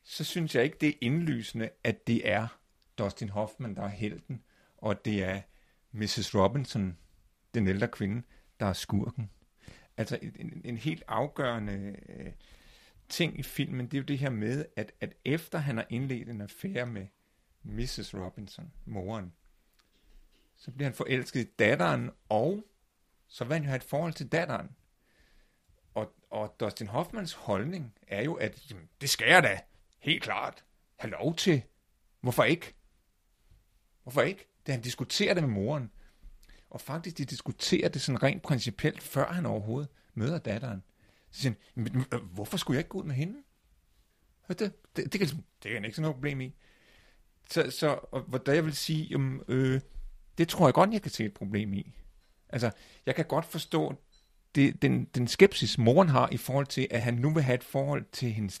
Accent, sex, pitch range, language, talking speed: native, male, 105-150 Hz, Danish, 180 wpm